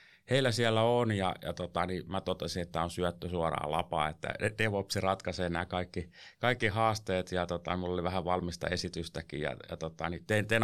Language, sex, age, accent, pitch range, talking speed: Finnish, male, 30-49, native, 90-105 Hz, 190 wpm